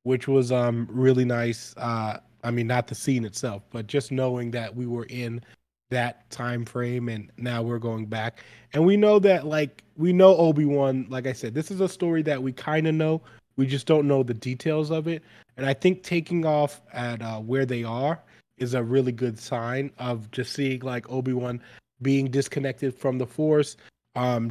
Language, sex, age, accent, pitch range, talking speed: English, male, 20-39, American, 120-140 Hz, 200 wpm